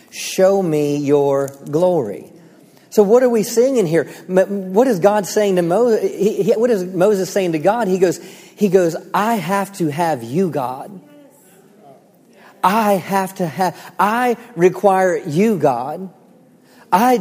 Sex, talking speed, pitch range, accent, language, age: male, 145 wpm, 170-210 Hz, American, English, 40-59